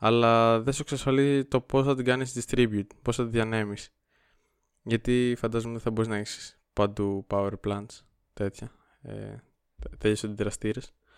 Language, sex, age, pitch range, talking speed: Greek, male, 20-39, 105-125 Hz, 145 wpm